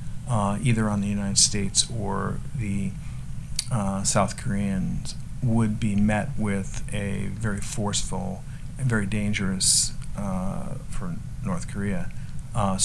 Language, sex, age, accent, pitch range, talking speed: English, male, 50-69, American, 105-130 Hz, 120 wpm